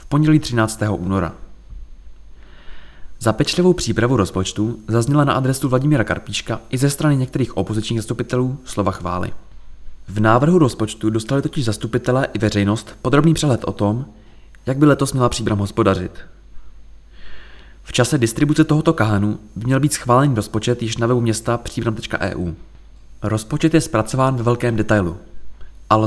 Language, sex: Czech, male